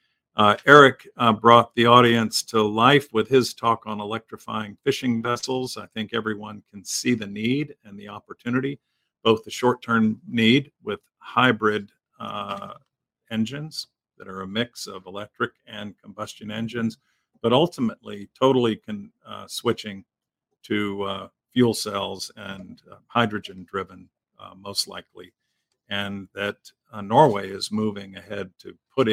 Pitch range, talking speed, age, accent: 100-125 Hz, 135 wpm, 50-69, American